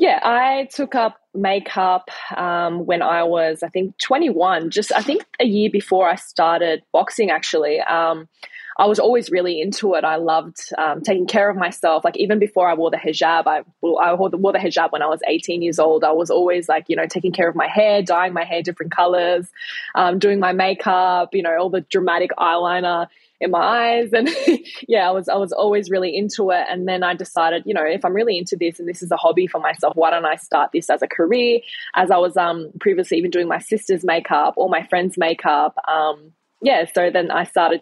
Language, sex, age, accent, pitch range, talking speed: English, female, 10-29, Australian, 165-200 Hz, 220 wpm